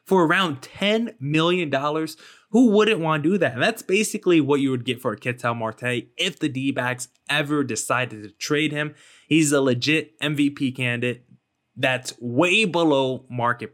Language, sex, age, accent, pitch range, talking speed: English, male, 20-39, American, 125-160 Hz, 165 wpm